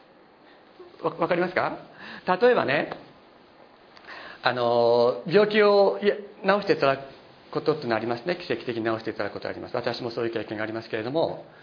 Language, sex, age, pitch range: Japanese, male, 40-59, 155-210 Hz